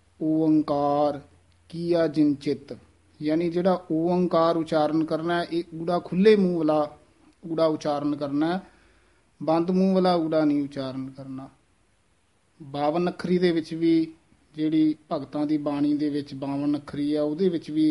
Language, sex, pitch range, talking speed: Punjabi, male, 145-165 Hz, 140 wpm